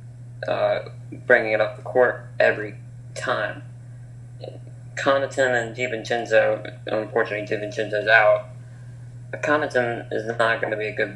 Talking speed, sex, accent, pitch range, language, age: 120 wpm, male, American, 110-120 Hz, English, 20-39